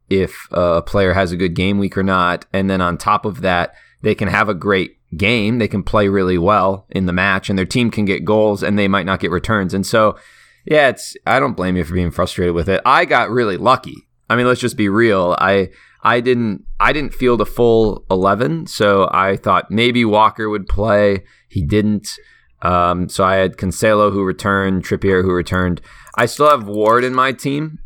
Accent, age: American, 20-39